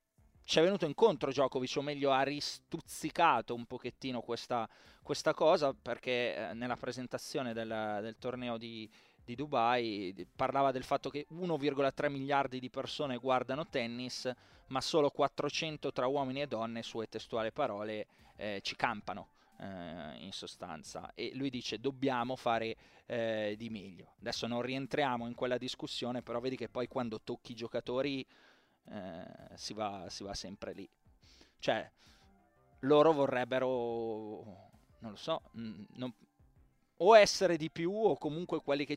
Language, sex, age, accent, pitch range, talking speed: Italian, male, 20-39, native, 115-140 Hz, 145 wpm